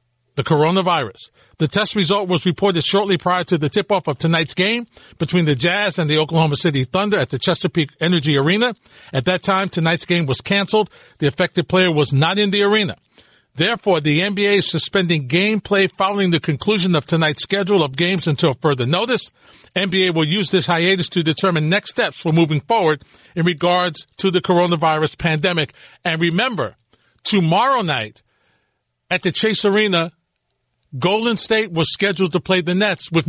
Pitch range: 155-195 Hz